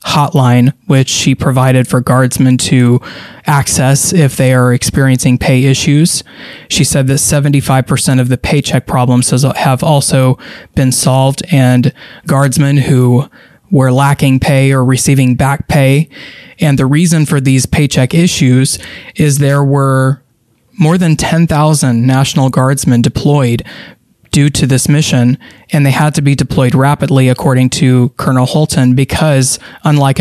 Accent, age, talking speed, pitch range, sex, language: American, 20-39, 135 wpm, 130-145 Hz, male, English